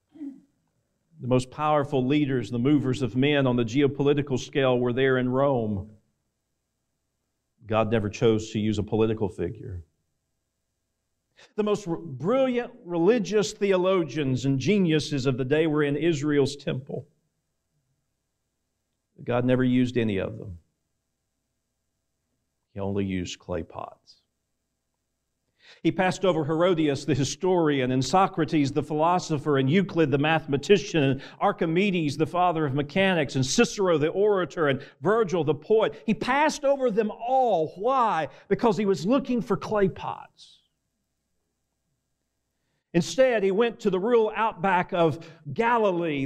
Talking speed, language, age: 130 wpm, English, 50-69